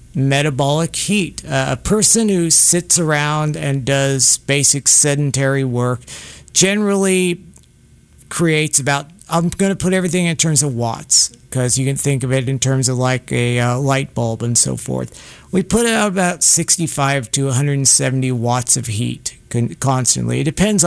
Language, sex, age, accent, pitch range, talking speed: English, male, 50-69, American, 130-160 Hz, 160 wpm